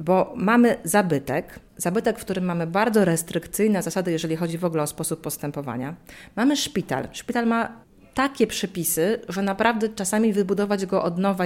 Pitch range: 170-215 Hz